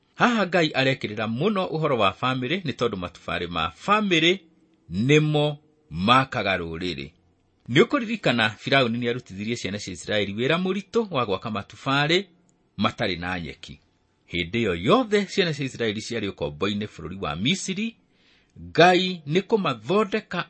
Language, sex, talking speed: English, male, 125 wpm